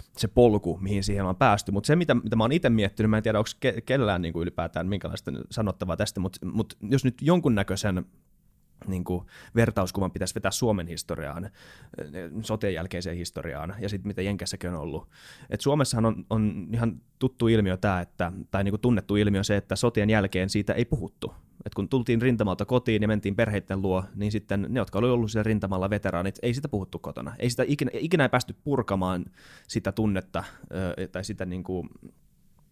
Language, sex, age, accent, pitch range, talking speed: Finnish, male, 20-39, native, 95-120 Hz, 180 wpm